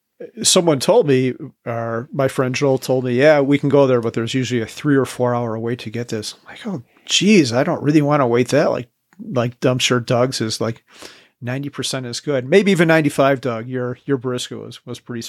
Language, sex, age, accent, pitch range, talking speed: English, male, 40-59, American, 120-145 Hz, 225 wpm